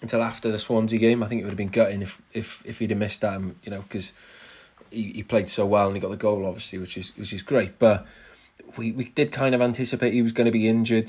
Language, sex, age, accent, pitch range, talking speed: English, male, 20-39, British, 100-110 Hz, 275 wpm